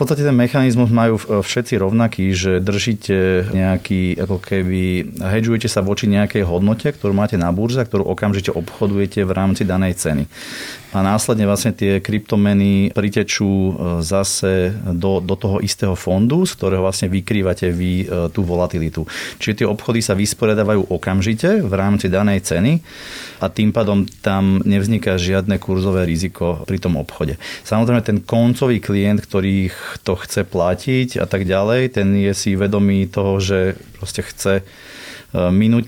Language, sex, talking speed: Slovak, male, 145 wpm